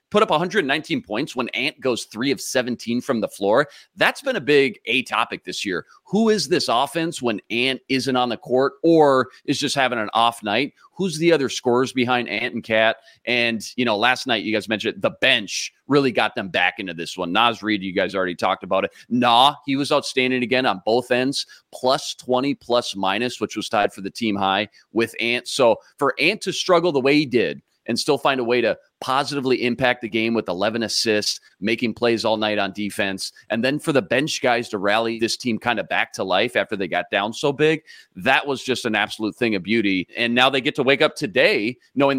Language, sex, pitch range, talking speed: English, male, 110-135 Hz, 225 wpm